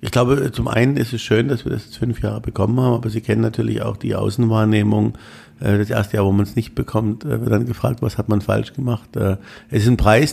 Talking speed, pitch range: 245 wpm, 105-115 Hz